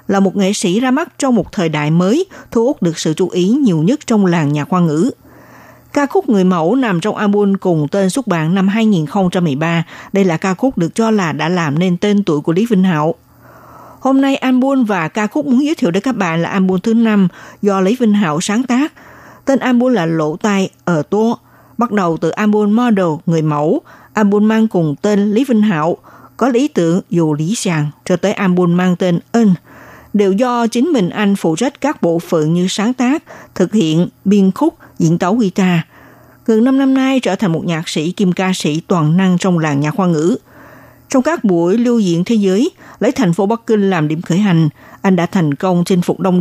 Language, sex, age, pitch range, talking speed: Vietnamese, female, 60-79, 170-230 Hz, 220 wpm